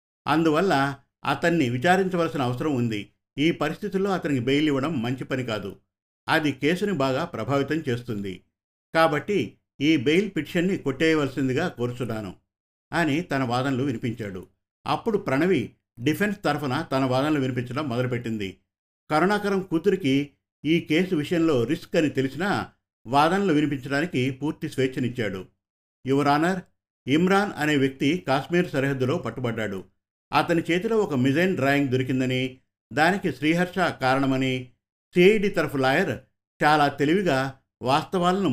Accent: native